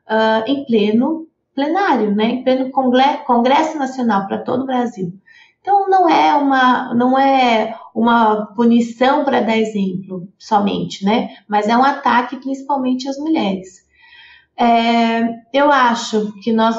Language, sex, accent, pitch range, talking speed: Portuguese, female, Brazilian, 220-280 Hz, 125 wpm